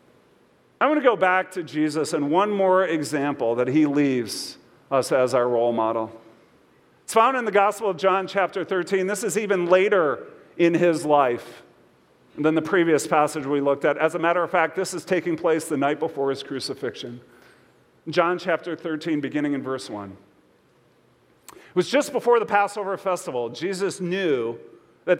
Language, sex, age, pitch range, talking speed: English, male, 40-59, 145-190 Hz, 170 wpm